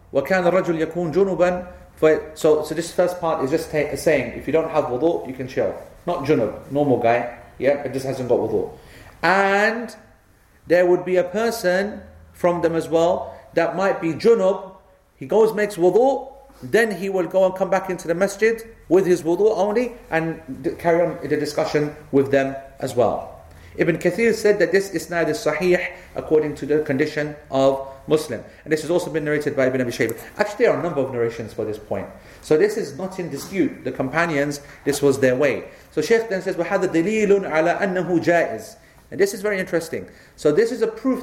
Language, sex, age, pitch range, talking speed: English, male, 40-59, 150-195 Hz, 195 wpm